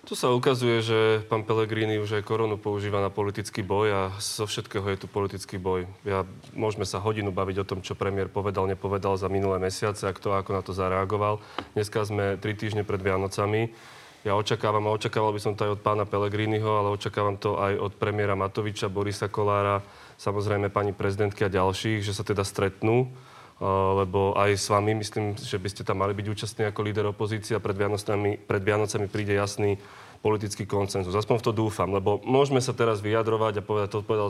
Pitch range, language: 100-110 Hz, Slovak